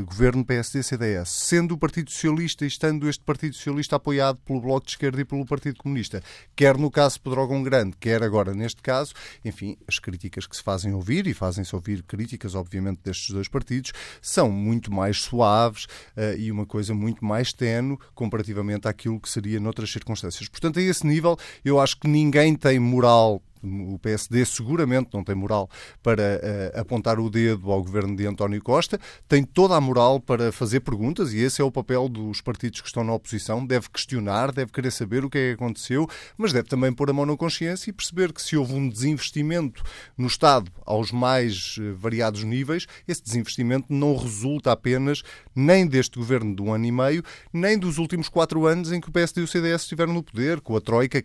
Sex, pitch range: male, 110-145 Hz